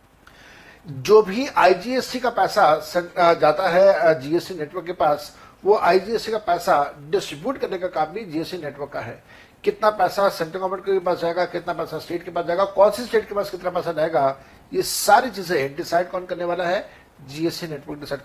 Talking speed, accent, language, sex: 185 wpm, native, Hindi, male